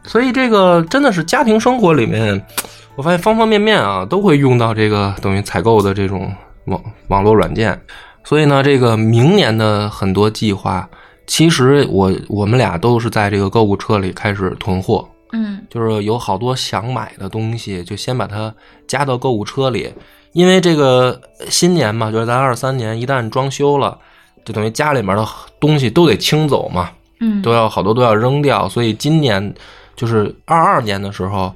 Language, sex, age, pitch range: Chinese, male, 20-39, 105-165 Hz